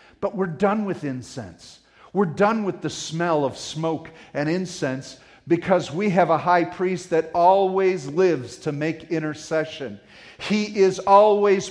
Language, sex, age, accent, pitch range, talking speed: English, male, 40-59, American, 160-255 Hz, 150 wpm